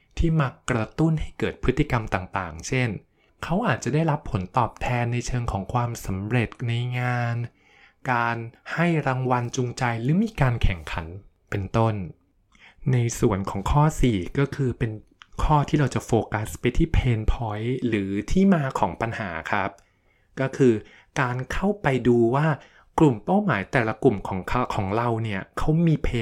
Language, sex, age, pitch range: Thai, male, 20-39, 105-135 Hz